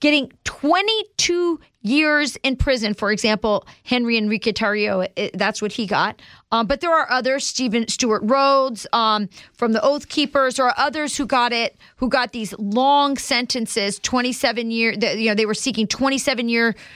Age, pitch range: 40-59, 220-275 Hz